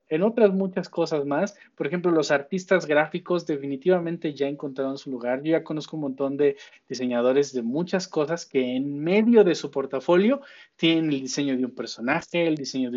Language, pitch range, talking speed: Spanish, 130-175 Hz, 185 wpm